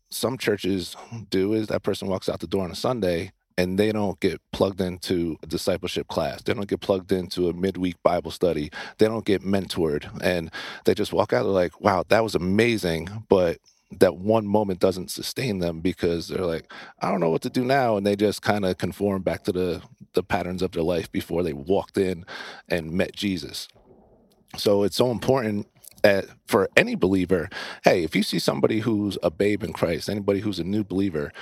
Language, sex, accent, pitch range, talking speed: English, male, American, 90-110 Hz, 200 wpm